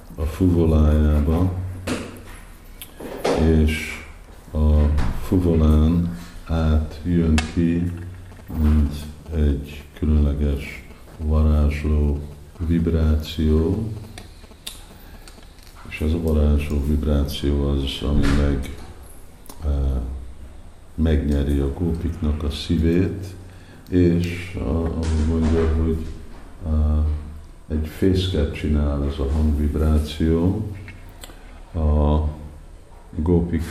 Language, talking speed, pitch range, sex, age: Hungarian, 70 wpm, 75-85 Hz, male, 50-69